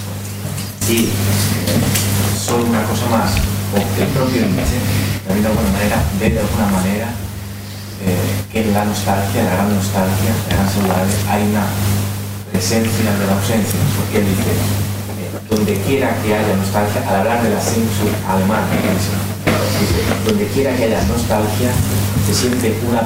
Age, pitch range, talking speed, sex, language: 30-49, 100-115 Hz, 155 wpm, male, Spanish